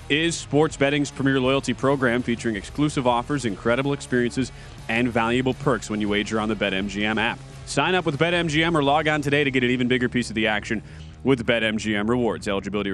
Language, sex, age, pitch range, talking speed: English, male, 30-49, 120-155 Hz, 195 wpm